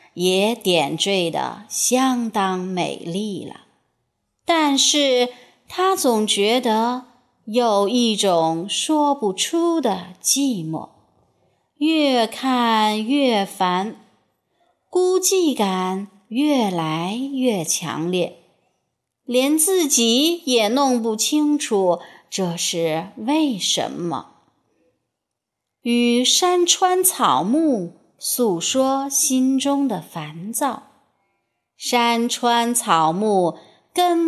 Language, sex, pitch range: Chinese, female, 185-275 Hz